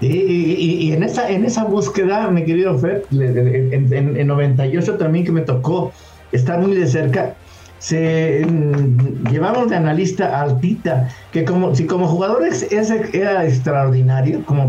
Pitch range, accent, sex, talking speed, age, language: 130-175 Hz, Mexican, male, 155 wpm, 60-79, English